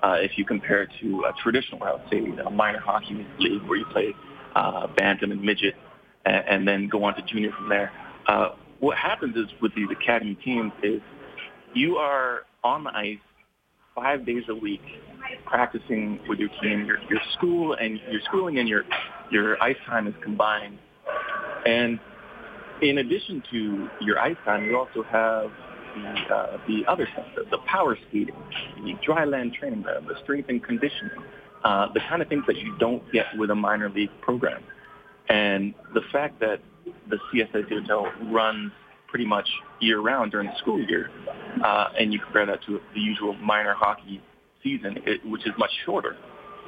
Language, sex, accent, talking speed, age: English, male, American, 180 wpm, 30-49